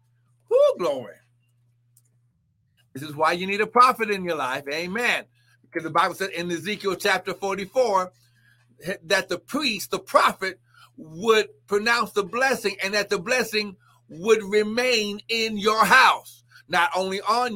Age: 60-79